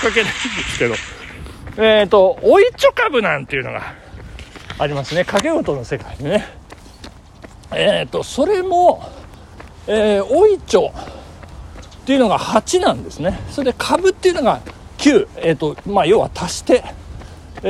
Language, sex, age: Japanese, male, 60-79